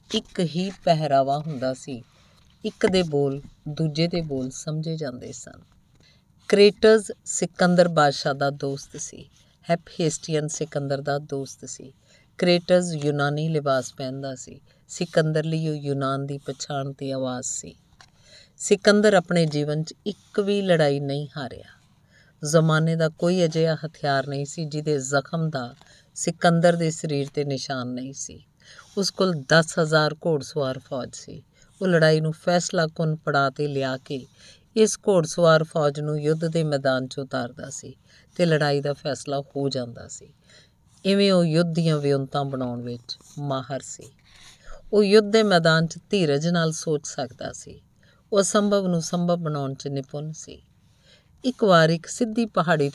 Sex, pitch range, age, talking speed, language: female, 140-170 Hz, 50-69, 130 wpm, Punjabi